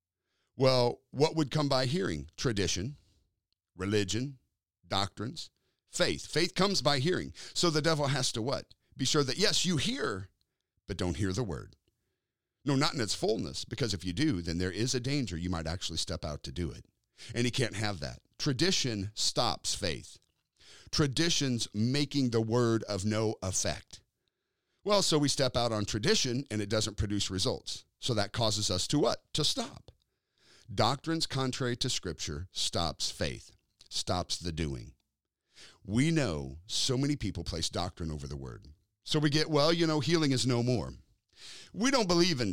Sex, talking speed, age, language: male, 170 wpm, 50-69, English